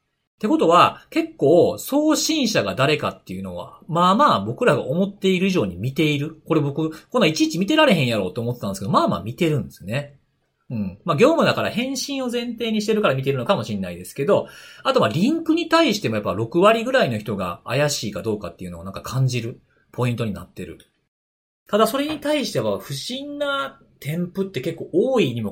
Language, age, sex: Japanese, 40-59, male